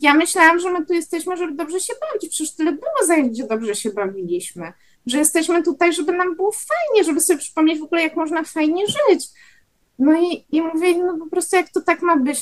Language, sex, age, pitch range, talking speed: Polish, female, 20-39, 200-300 Hz, 220 wpm